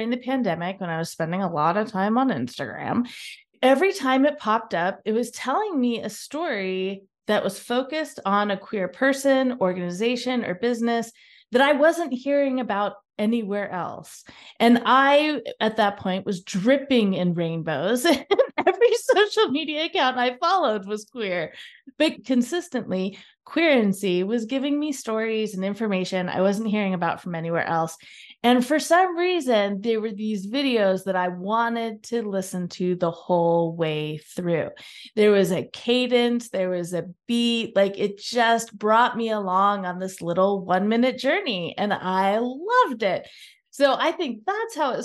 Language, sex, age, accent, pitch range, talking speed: English, female, 20-39, American, 190-260 Hz, 165 wpm